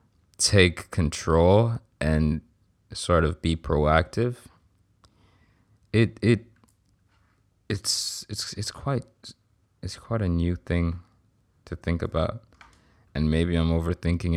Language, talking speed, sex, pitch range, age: English, 105 wpm, male, 85-110 Hz, 20-39